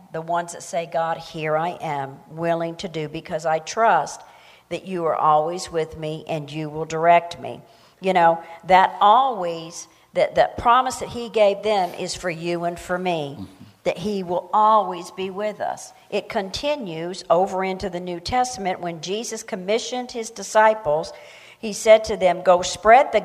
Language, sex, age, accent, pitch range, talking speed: English, female, 50-69, American, 170-220 Hz, 175 wpm